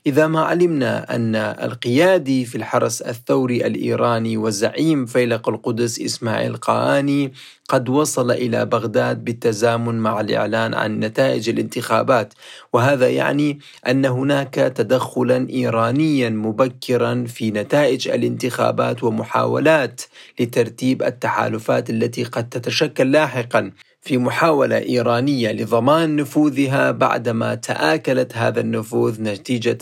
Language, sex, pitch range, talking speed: Arabic, male, 110-135 Hz, 105 wpm